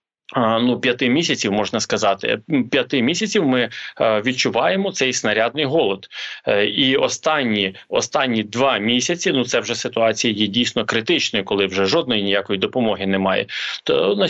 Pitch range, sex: 120-155 Hz, male